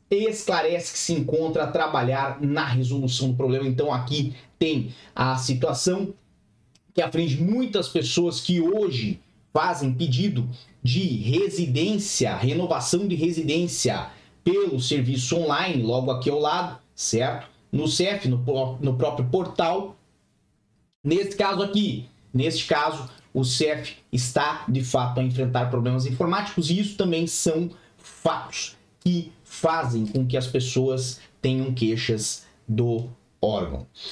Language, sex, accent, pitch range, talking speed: Portuguese, male, Brazilian, 130-170 Hz, 125 wpm